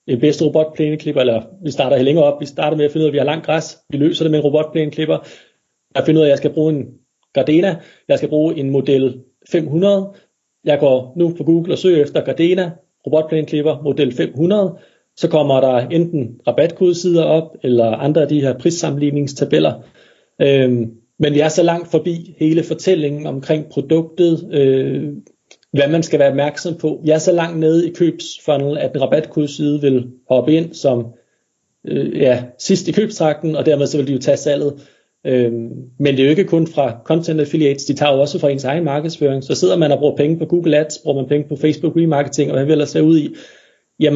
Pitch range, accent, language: 140-165 Hz, native, Danish